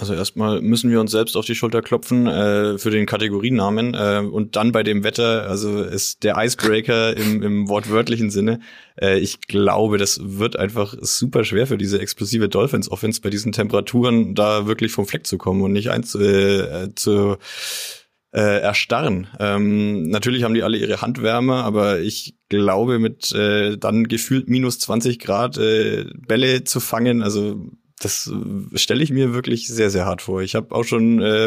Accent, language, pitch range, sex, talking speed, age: German, German, 100-115 Hz, male, 175 wpm, 20-39